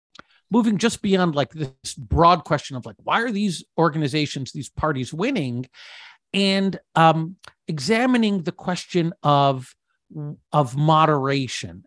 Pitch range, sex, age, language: 135-180 Hz, male, 50-69, English